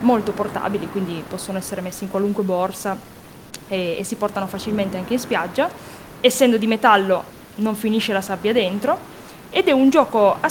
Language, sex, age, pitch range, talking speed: Italian, female, 20-39, 195-240 Hz, 170 wpm